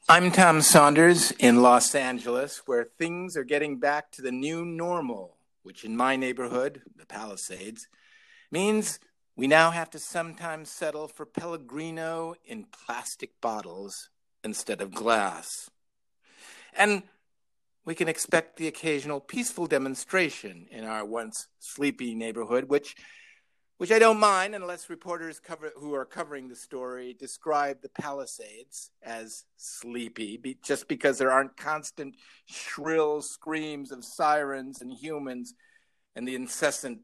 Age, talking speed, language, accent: 50-69, 130 wpm, English, American